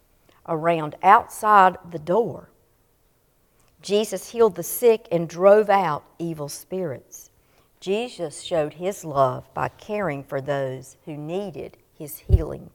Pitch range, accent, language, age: 160-215 Hz, American, English, 50-69